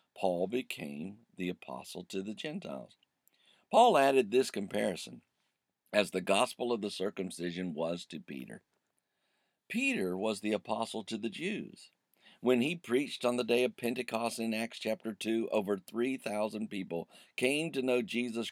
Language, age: English, 50-69